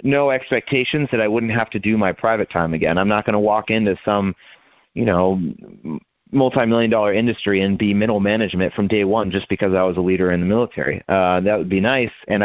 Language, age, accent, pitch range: English, 30-49, American, 95-110 Hz